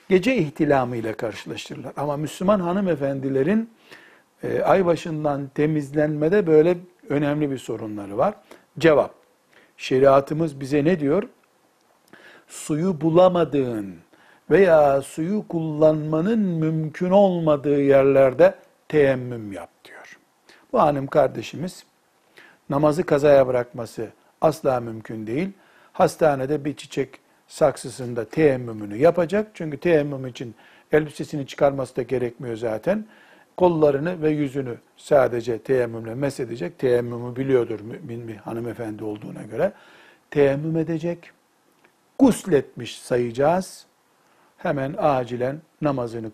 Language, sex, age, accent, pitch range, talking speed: Turkish, male, 60-79, native, 125-165 Hz, 100 wpm